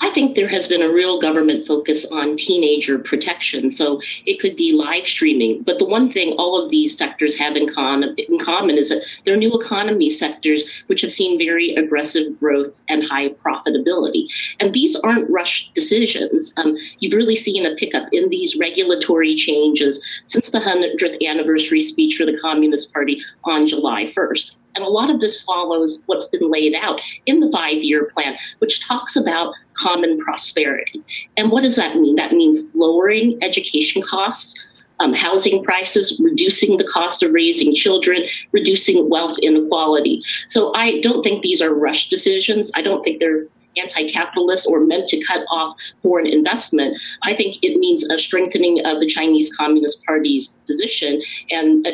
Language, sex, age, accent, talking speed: English, female, 30-49, American, 170 wpm